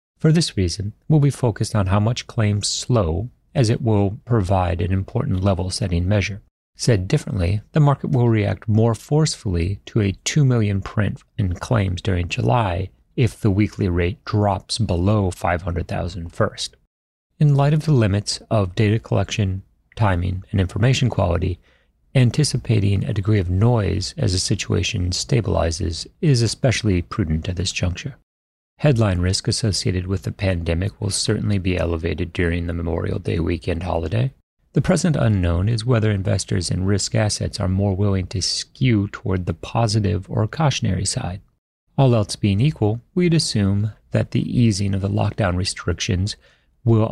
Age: 30-49